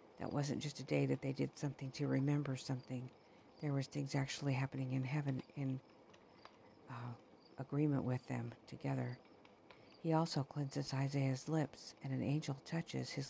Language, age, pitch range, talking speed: English, 50-69, 130-150 Hz, 160 wpm